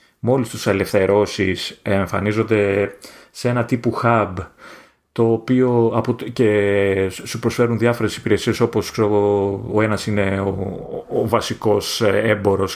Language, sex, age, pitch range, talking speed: Greek, male, 30-49, 105-135 Hz, 120 wpm